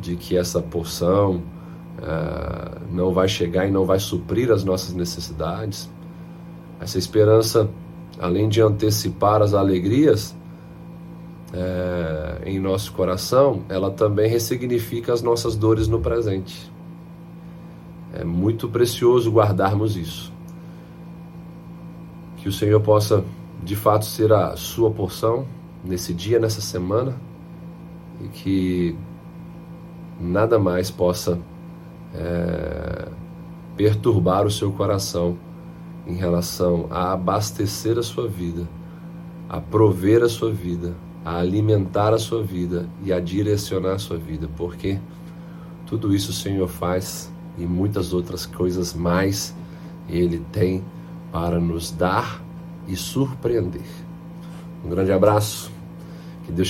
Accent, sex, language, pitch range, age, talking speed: Brazilian, male, Portuguese, 90-135 Hz, 40-59, 110 wpm